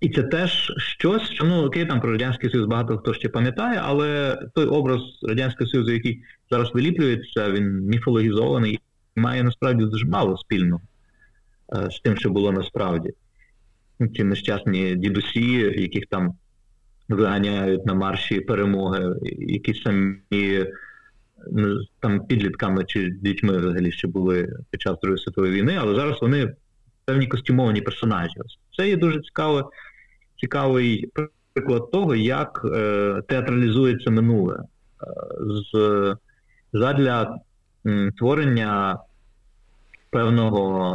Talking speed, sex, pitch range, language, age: 120 wpm, male, 100-125 Hz, Ukrainian, 30-49